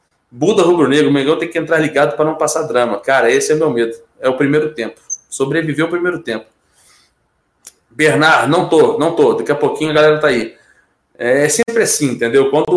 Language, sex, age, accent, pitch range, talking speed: Portuguese, male, 20-39, Brazilian, 125-160 Hz, 195 wpm